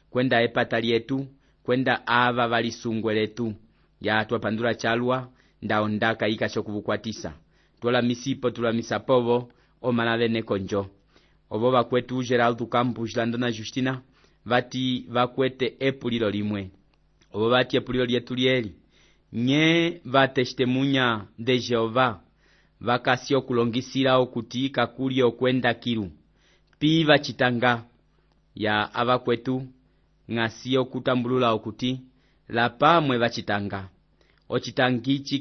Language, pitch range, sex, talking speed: English, 115-135 Hz, male, 105 wpm